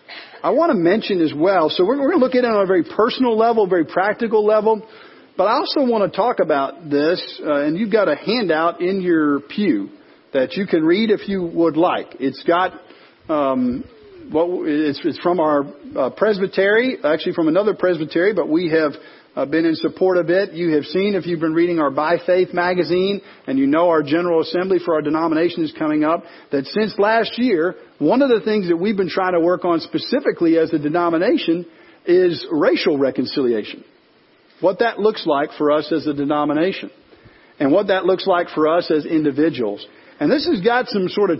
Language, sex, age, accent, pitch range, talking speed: English, male, 50-69, American, 160-225 Hz, 200 wpm